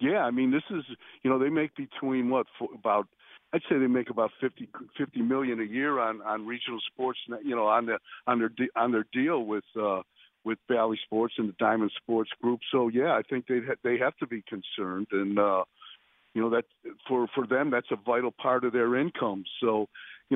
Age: 50-69